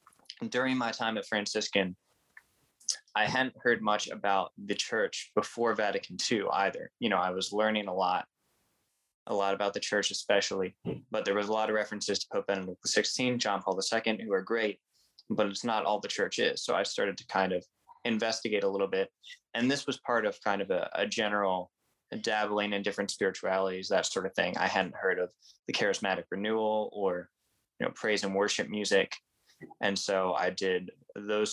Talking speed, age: 190 wpm, 20-39